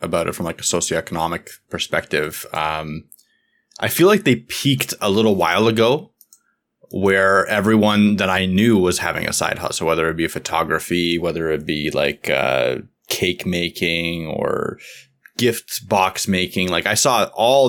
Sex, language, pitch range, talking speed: male, English, 85-110 Hz, 155 wpm